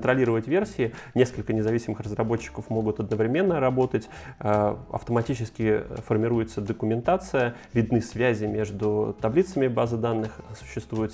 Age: 20-39